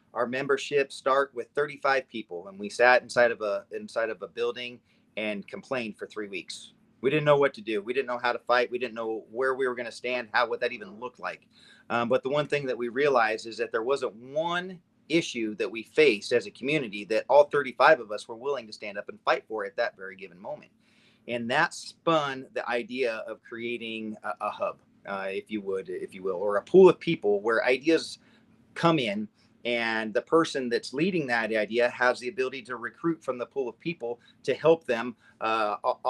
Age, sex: 30-49, male